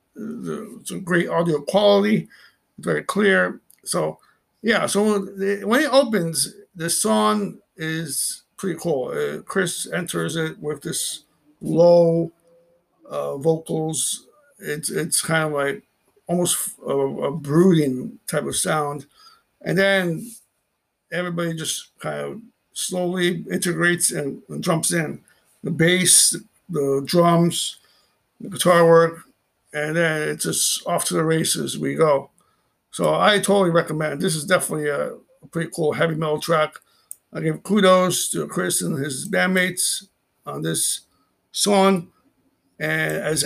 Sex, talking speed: male, 135 wpm